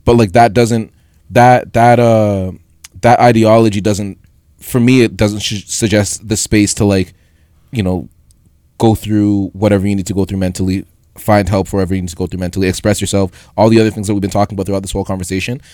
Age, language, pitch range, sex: 20-39, English, 90-105 Hz, male